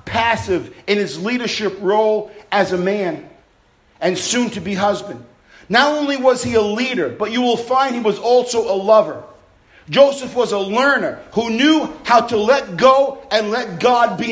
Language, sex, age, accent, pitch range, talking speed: English, male, 50-69, American, 170-240 Hz, 175 wpm